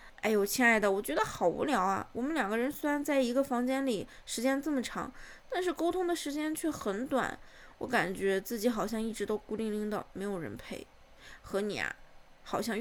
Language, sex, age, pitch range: Chinese, female, 20-39, 215-310 Hz